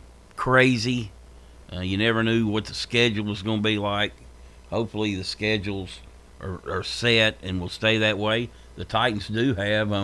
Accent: American